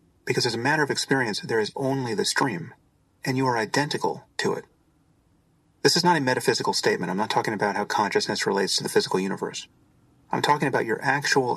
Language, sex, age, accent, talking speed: English, male, 40-59, American, 200 wpm